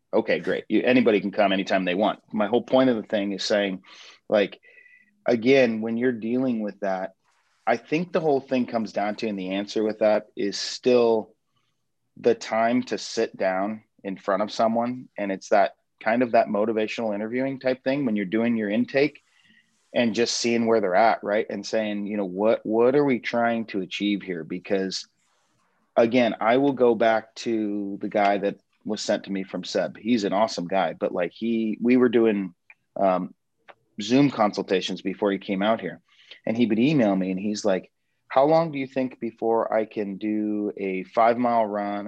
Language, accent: English, American